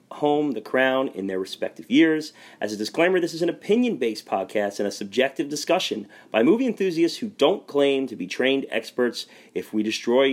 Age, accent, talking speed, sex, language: 30-49, American, 185 wpm, male, English